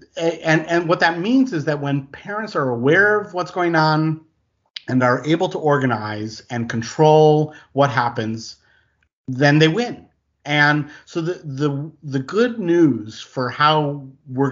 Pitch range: 120-155 Hz